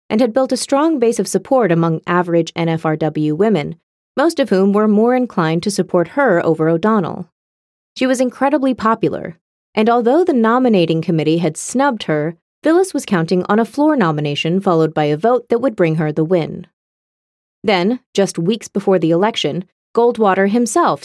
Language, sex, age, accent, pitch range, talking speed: English, female, 30-49, American, 170-240 Hz, 170 wpm